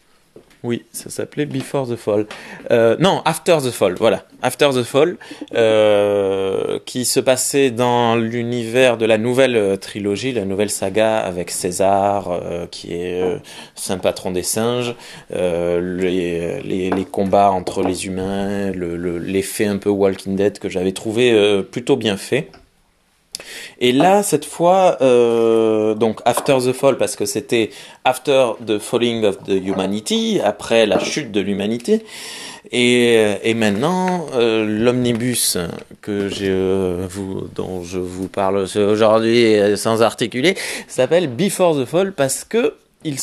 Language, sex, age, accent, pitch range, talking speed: French, male, 20-39, French, 100-130 Hz, 145 wpm